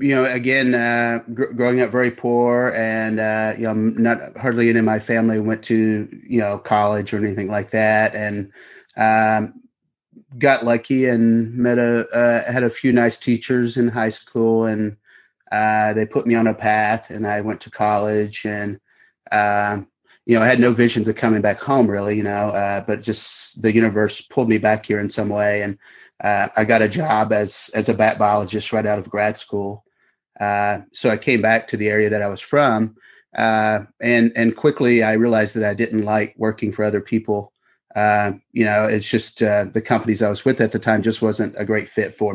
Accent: American